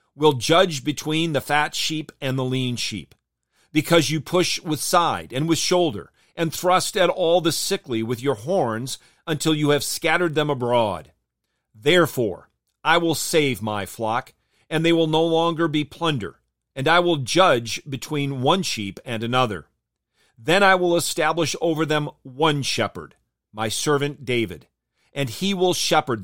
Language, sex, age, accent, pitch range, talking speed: English, male, 40-59, American, 115-165 Hz, 160 wpm